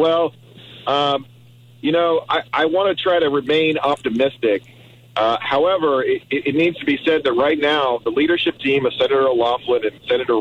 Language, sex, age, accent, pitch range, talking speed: English, male, 40-59, American, 130-205 Hz, 180 wpm